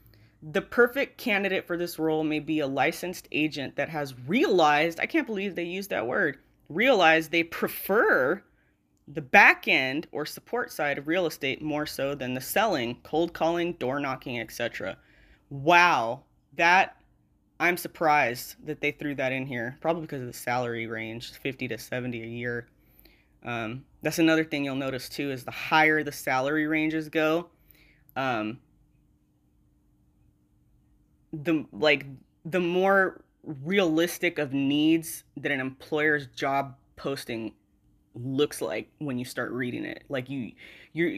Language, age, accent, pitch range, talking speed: English, 20-39, American, 130-160 Hz, 145 wpm